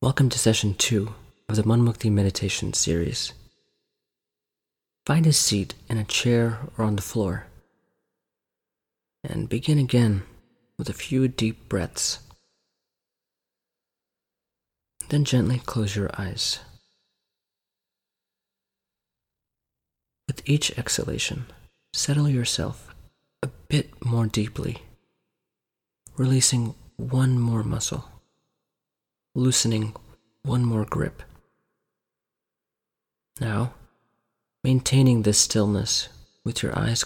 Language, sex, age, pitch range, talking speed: English, male, 30-49, 105-130 Hz, 90 wpm